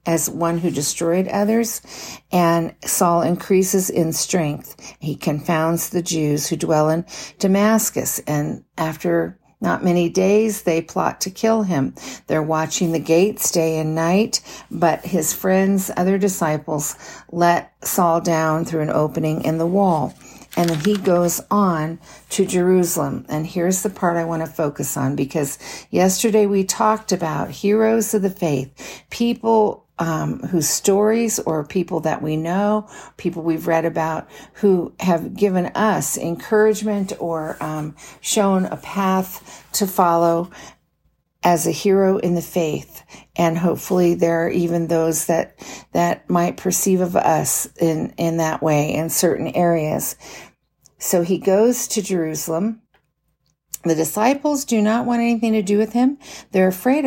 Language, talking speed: English, 150 wpm